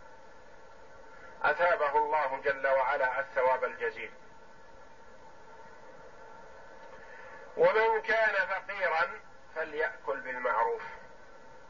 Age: 50-69